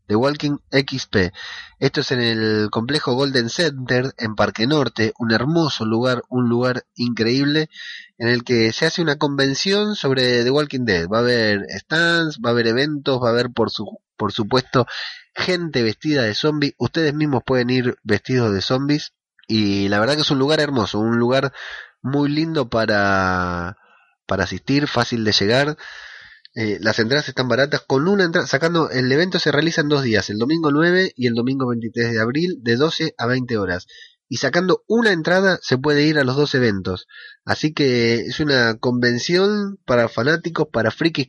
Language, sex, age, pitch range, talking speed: Spanish, male, 20-39, 115-155 Hz, 180 wpm